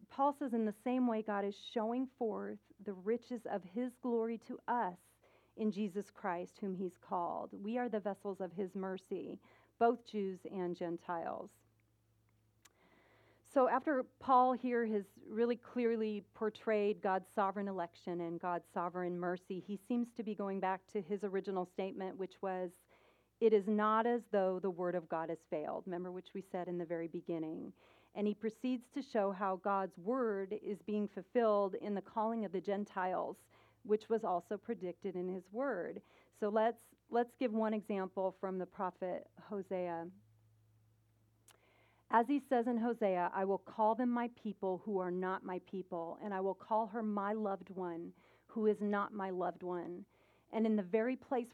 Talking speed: 175 wpm